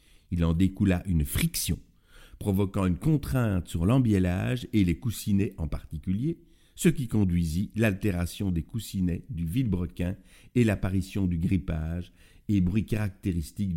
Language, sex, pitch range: French, male, 85-110 Hz